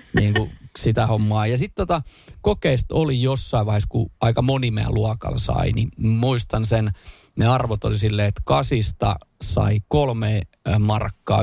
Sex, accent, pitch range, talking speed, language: male, native, 105-120 Hz, 145 wpm, Finnish